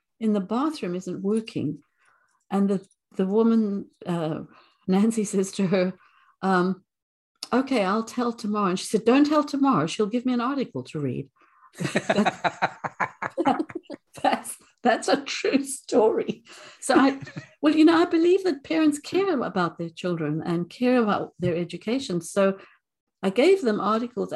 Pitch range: 185-245 Hz